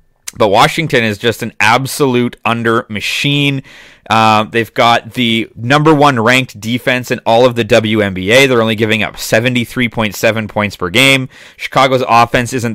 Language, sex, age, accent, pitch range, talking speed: English, male, 30-49, American, 110-135 Hz, 150 wpm